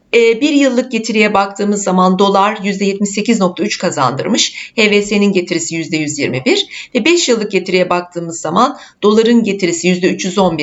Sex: female